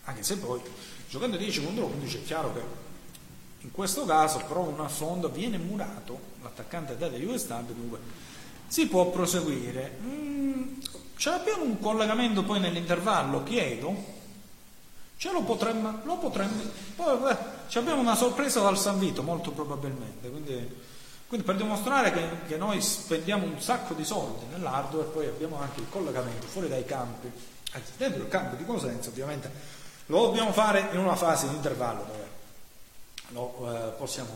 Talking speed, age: 145 wpm, 40-59